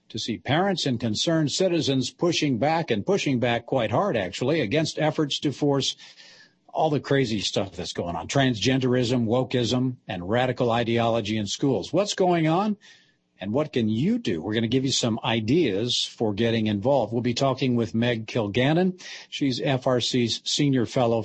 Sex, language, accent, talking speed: male, English, American, 170 wpm